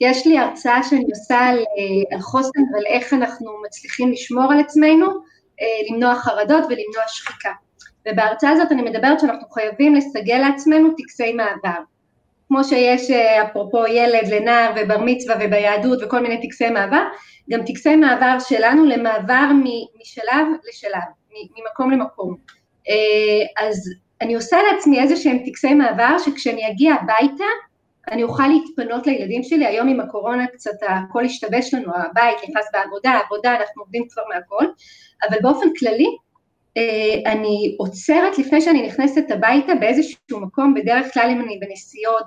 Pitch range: 220-290 Hz